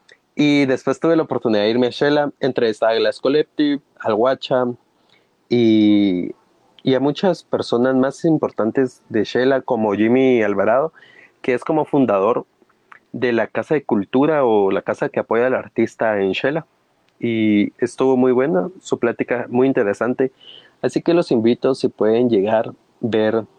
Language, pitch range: Spanish, 110-140 Hz